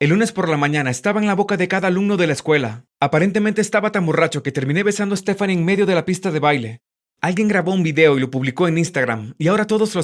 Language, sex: Spanish, male